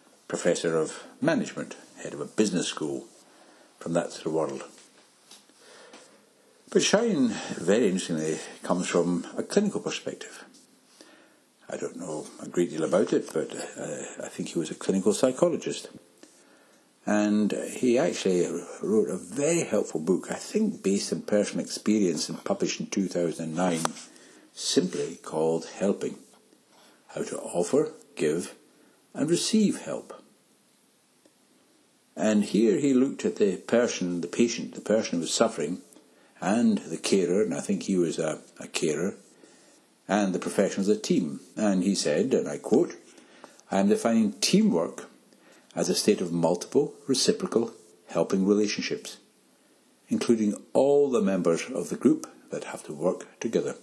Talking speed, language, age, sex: 145 wpm, English, 60-79, male